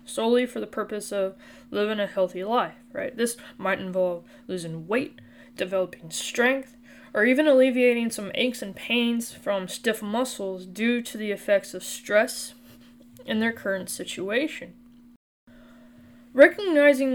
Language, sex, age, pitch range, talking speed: English, female, 10-29, 195-250 Hz, 135 wpm